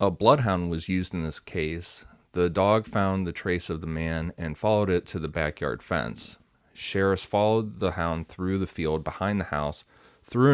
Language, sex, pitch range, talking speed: English, male, 80-95 Hz, 190 wpm